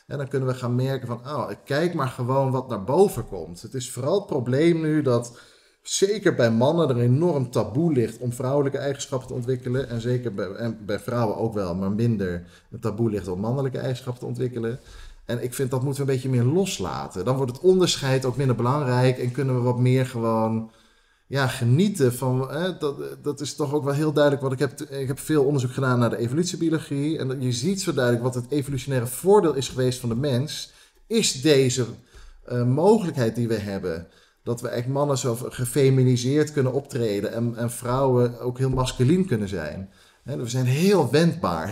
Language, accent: English, Dutch